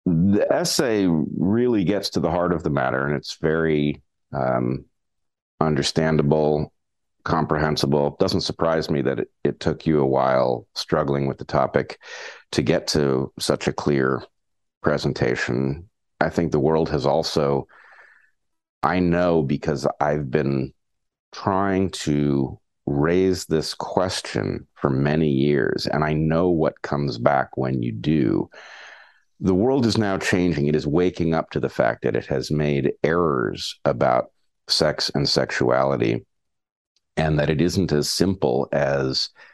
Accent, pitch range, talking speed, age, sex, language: American, 70-80 Hz, 145 wpm, 40-59, male, English